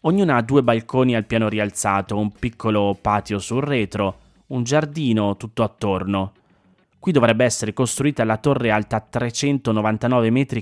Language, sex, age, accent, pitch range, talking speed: Italian, male, 20-39, native, 105-130 Hz, 140 wpm